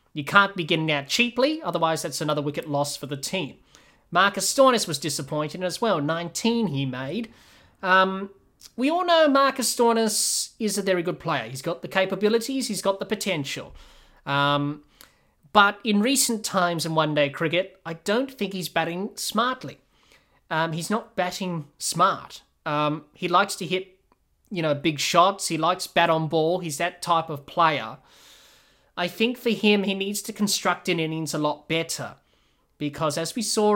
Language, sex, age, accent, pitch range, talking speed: English, male, 20-39, Australian, 160-210 Hz, 170 wpm